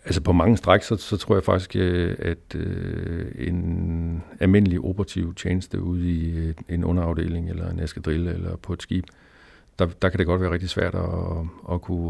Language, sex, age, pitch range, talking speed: Danish, male, 50-69, 85-95 Hz, 180 wpm